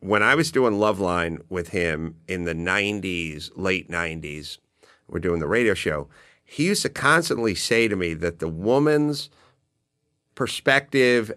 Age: 50-69